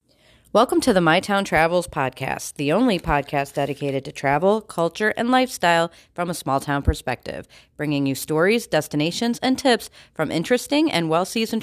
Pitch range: 155-235 Hz